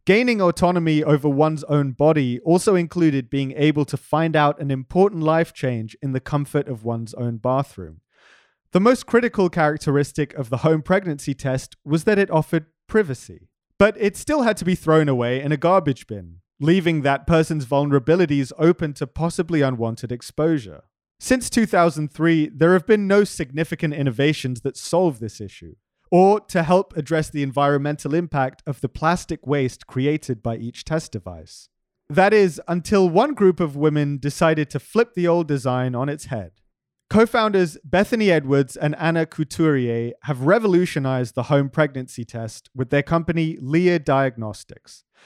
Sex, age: male, 30-49